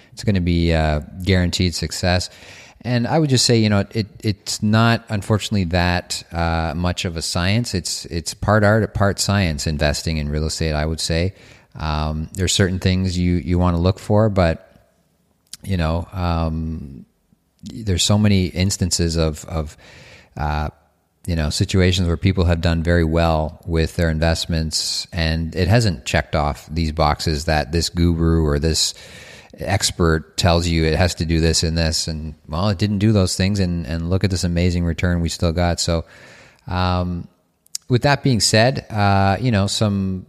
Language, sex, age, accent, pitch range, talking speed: English, male, 40-59, American, 80-100 Hz, 180 wpm